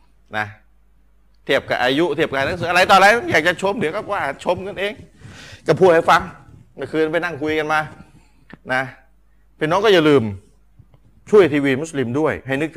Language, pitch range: Thai, 135-190 Hz